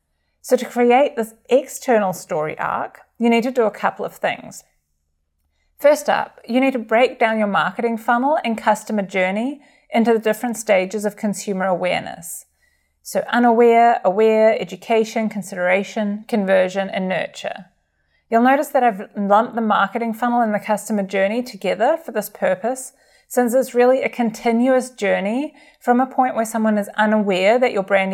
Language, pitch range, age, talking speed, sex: English, 200-245 Hz, 30-49, 160 wpm, female